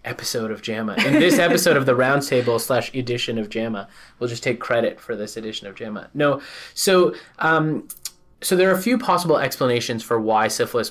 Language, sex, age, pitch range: English, male, 20-39, 115-140 Hz